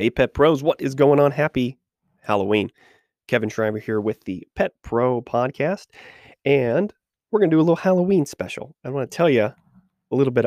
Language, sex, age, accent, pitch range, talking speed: English, male, 30-49, American, 95-120 Hz, 195 wpm